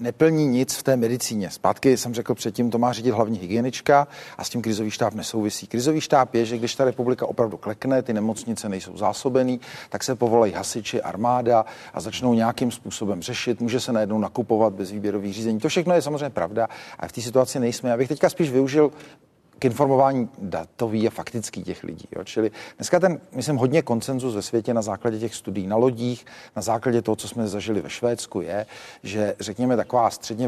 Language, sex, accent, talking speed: Czech, male, native, 195 wpm